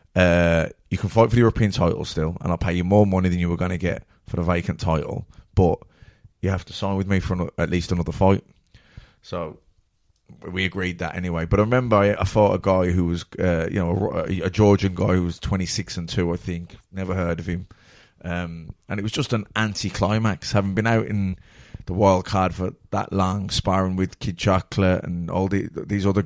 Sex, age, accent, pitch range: male, 20-39, British, 90-105 Hz